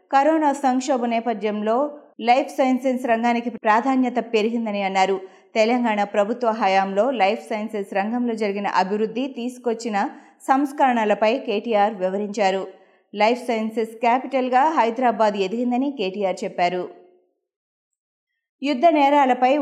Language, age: Telugu, 20-39